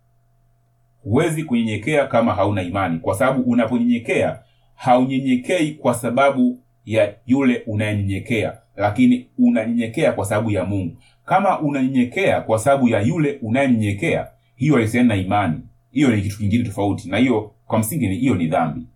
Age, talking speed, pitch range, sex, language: 30-49, 140 wpm, 110-130 Hz, male, Swahili